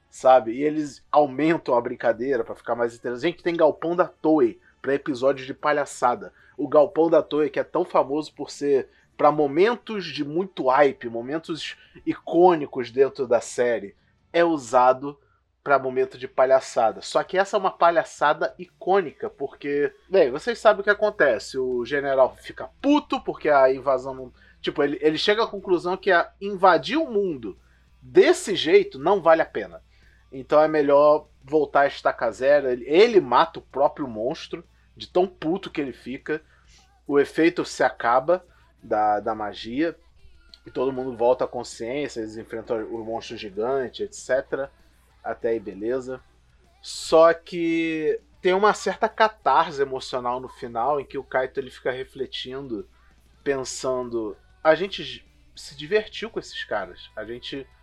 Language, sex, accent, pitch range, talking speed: Portuguese, male, Brazilian, 130-195 Hz, 155 wpm